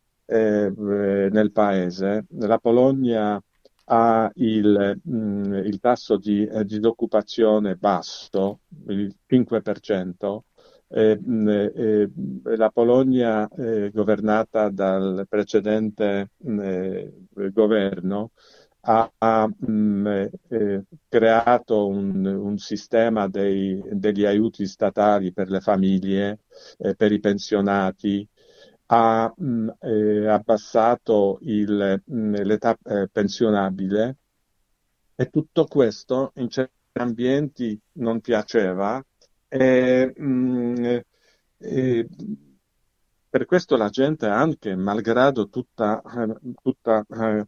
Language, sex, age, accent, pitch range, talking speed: Italian, male, 50-69, native, 100-115 Hz, 80 wpm